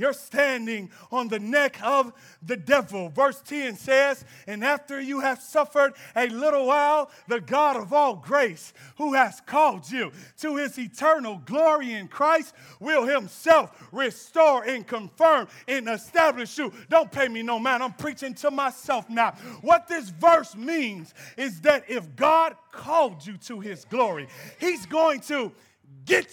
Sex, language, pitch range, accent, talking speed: male, English, 240-310 Hz, American, 155 wpm